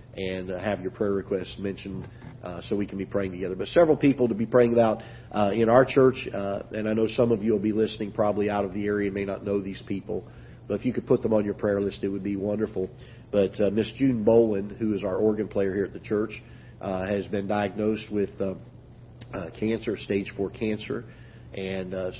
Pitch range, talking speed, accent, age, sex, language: 100-115 Hz, 230 wpm, American, 40-59, male, English